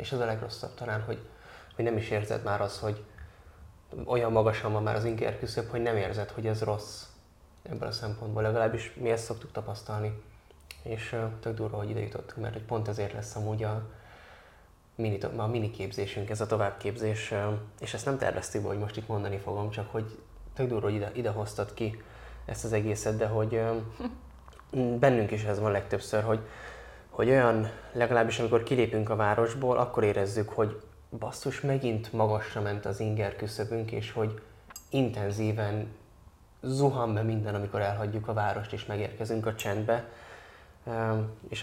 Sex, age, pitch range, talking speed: male, 20-39, 105-115 Hz, 170 wpm